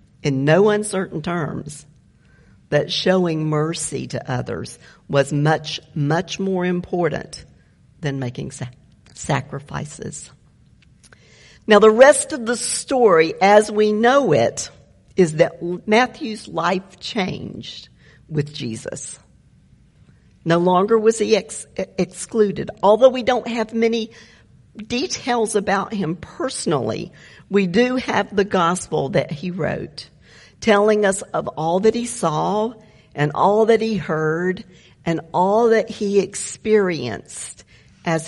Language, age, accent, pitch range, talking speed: English, 50-69, American, 150-210 Hz, 115 wpm